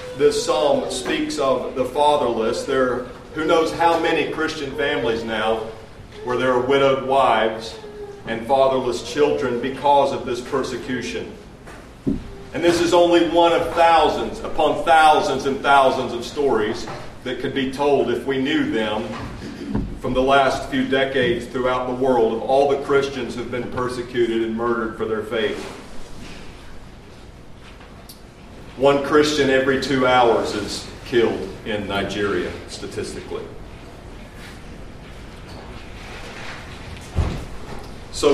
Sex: male